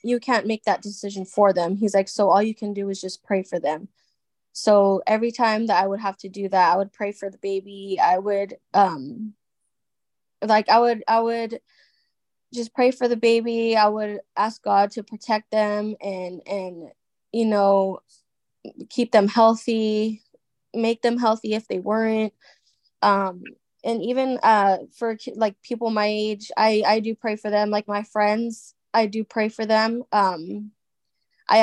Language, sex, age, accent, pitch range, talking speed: English, female, 20-39, American, 200-225 Hz, 175 wpm